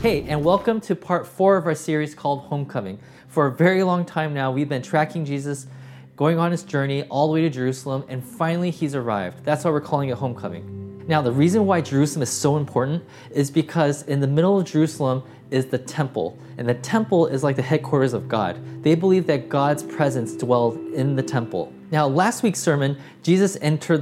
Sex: male